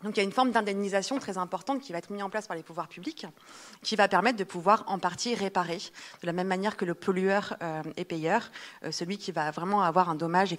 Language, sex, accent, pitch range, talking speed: French, female, French, 165-205 Hz, 250 wpm